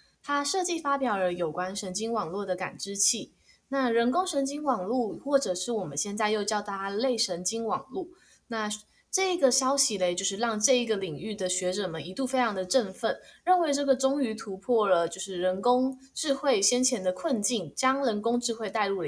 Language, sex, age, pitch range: Chinese, female, 20-39, 195-270 Hz